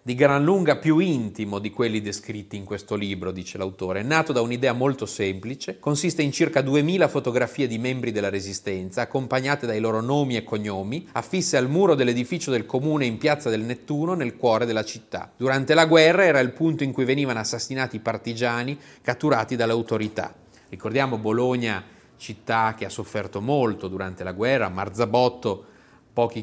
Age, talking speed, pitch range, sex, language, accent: 30-49, 170 wpm, 110-145 Hz, male, Italian, native